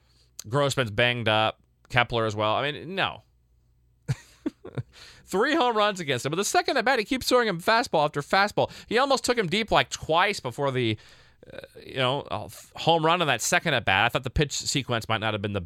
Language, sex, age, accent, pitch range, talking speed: English, male, 30-49, American, 110-150 Hz, 215 wpm